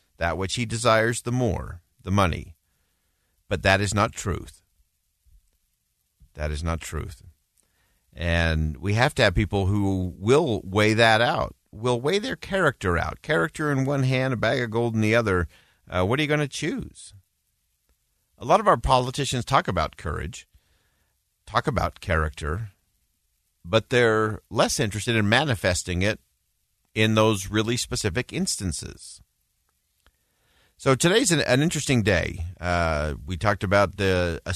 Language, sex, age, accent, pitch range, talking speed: English, male, 50-69, American, 90-125 Hz, 150 wpm